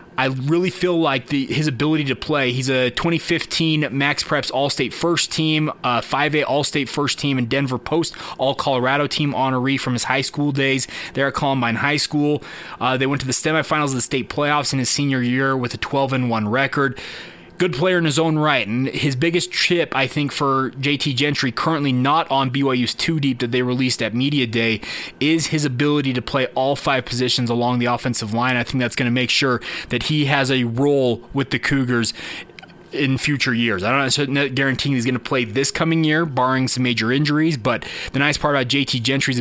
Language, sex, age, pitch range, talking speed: English, male, 20-39, 120-145 Hz, 215 wpm